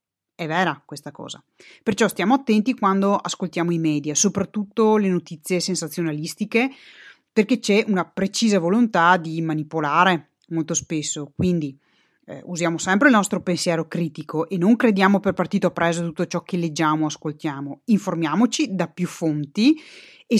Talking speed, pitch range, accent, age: 145 wpm, 165-220 Hz, native, 30-49